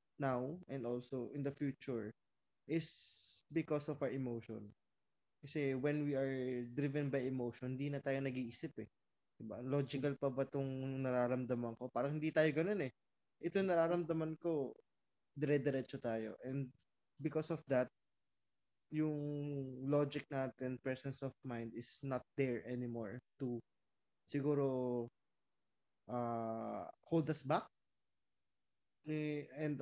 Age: 20-39